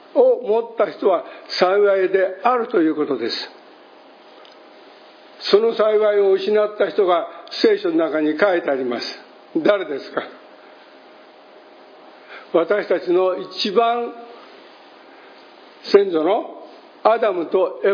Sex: male